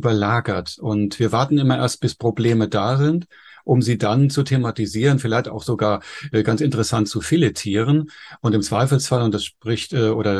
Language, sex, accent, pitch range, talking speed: German, male, German, 105-125 Hz, 180 wpm